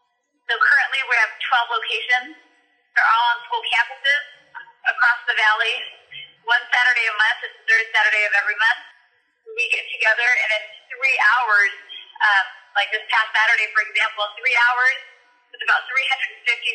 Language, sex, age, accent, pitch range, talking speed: English, female, 30-49, American, 215-315 Hz, 160 wpm